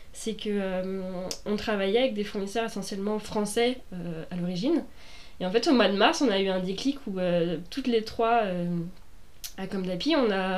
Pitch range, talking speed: 185-225 Hz, 195 wpm